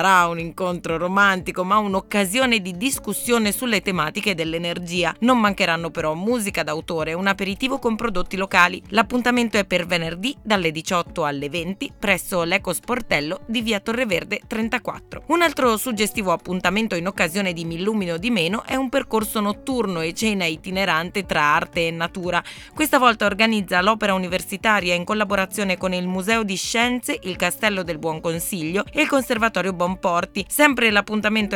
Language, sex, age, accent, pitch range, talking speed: Italian, female, 20-39, native, 175-220 Hz, 150 wpm